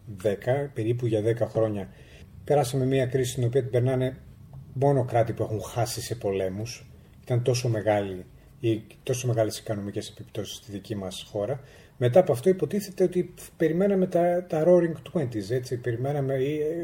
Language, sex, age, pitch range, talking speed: Greek, male, 40-59, 115-160 Hz, 180 wpm